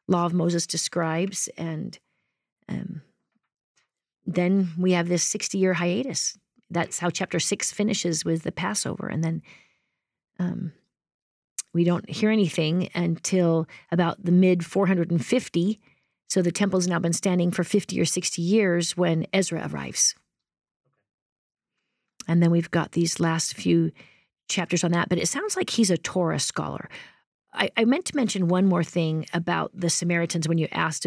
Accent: American